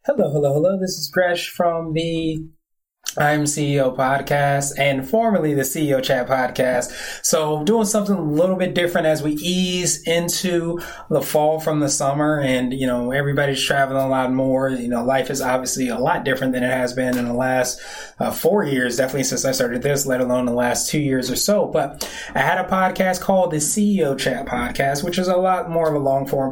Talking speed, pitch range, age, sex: 210 wpm, 135-160 Hz, 20-39, male